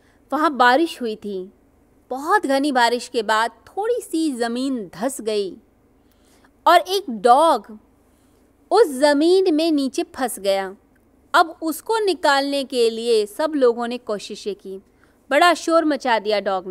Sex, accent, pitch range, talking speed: female, native, 225-320 Hz, 135 wpm